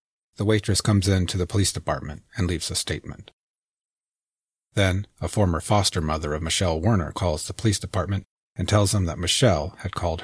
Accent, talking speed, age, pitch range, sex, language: American, 180 wpm, 40-59, 85-105 Hz, male, English